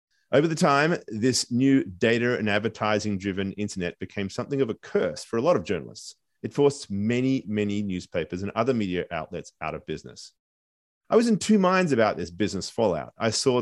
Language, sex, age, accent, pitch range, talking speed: English, male, 30-49, Australian, 95-125 Hz, 190 wpm